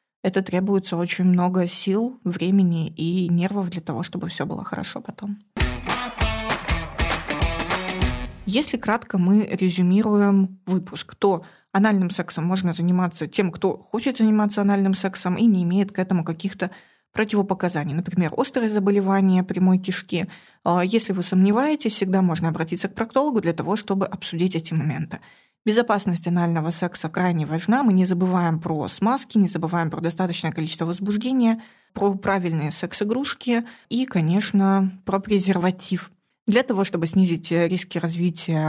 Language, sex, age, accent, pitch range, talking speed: Russian, female, 20-39, native, 170-200 Hz, 135 wpm